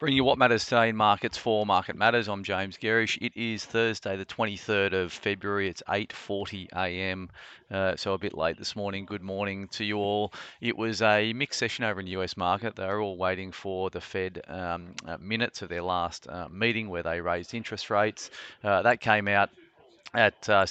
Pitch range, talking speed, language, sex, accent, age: 90-105 Hz, 195 wpm, English, male, Australian, 30-49